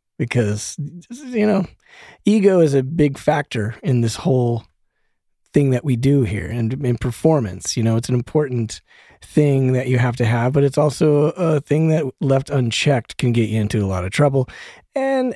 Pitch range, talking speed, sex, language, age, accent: 100-135 Hz, 185 wpm, male, English, 30-49, American